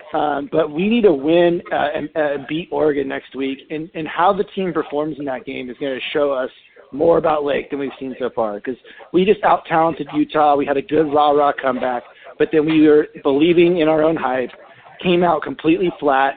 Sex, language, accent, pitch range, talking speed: male, English, American, 140-165 Hz, 215 wpm